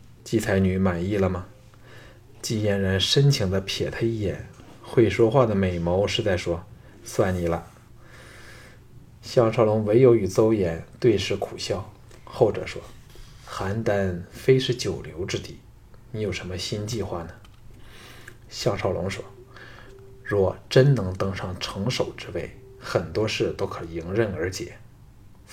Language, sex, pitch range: Chinese, male, 95-125 Hz